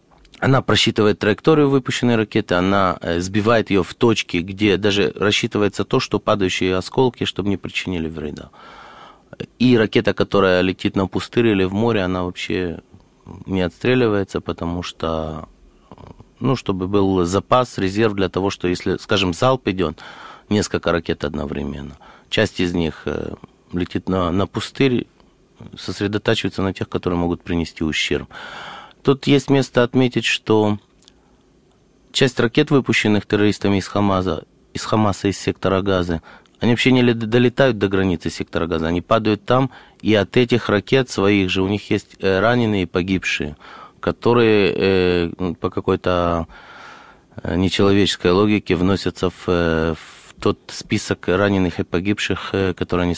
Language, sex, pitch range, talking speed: Russian, male, 90-110 Hz, 130 wpm